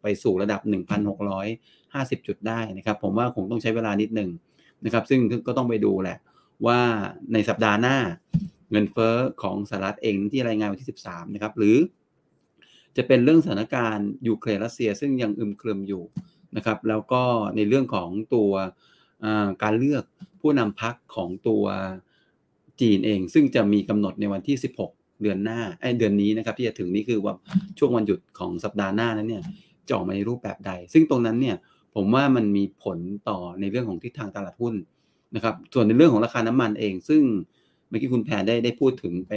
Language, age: Thai, 30-49